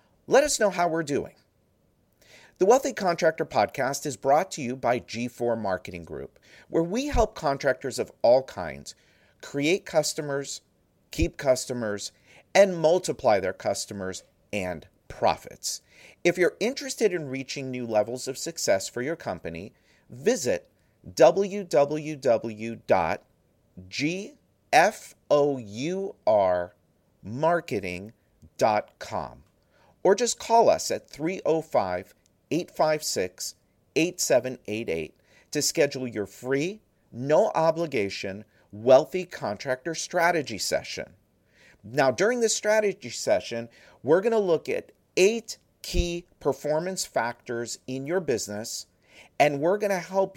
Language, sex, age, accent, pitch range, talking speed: English, male, 50-69, American, 115-175 Hz, 105 wpm